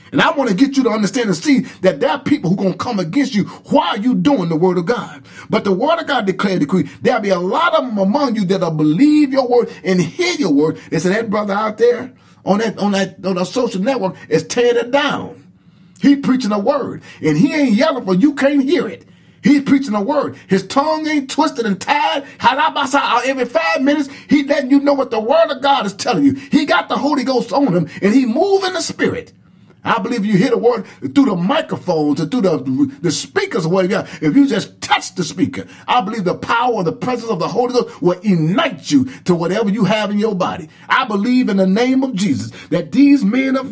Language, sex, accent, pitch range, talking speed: English, male, American, 190-275 Hz, 235 wpm